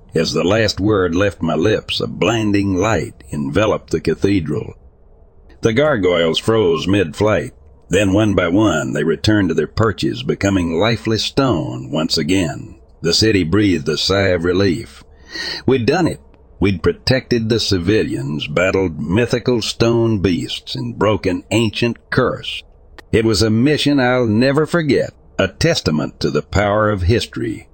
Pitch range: 85-110 Hz